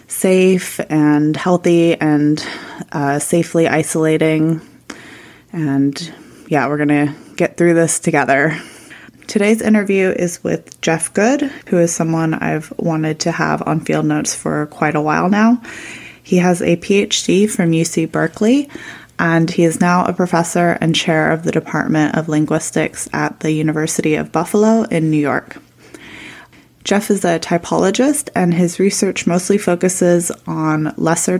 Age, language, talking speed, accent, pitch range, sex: 20-39, English, 145 wpm, American, 160-190 Hz, female